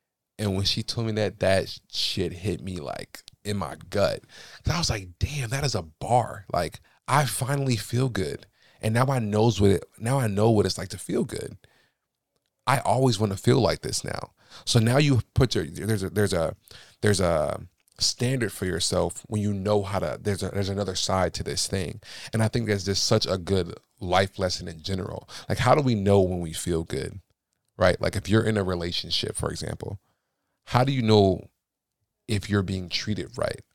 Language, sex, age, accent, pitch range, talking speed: English, male, 30-49, American, 95-115 Hz, 210 wpm